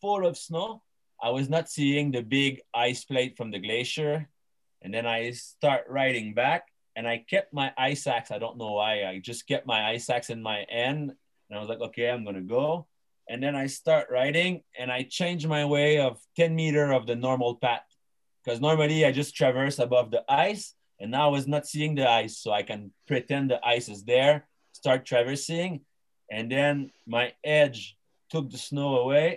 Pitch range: 120-150 Hz